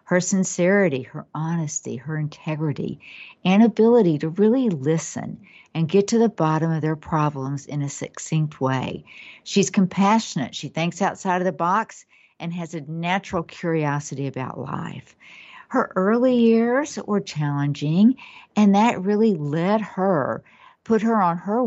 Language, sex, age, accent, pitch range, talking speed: English, female, 50-69, American, 155-200 Hz, 145 wpm